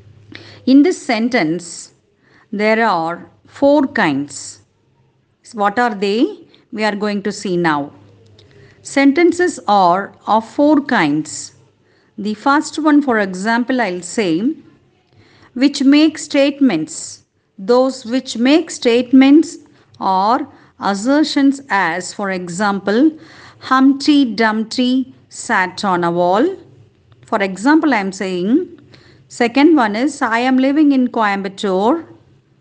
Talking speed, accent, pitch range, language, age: 110 wpm, native, 195-280 Hz, Tamil, 50-69